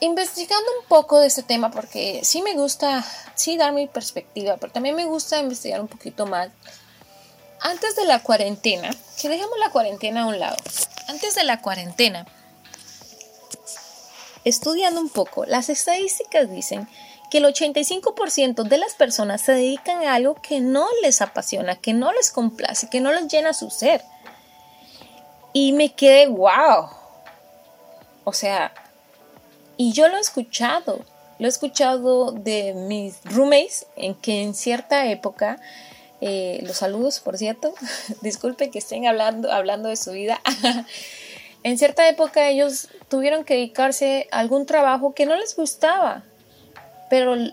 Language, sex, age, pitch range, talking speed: Spanish, female, 20-39, 220-300 Hz, 150 wpm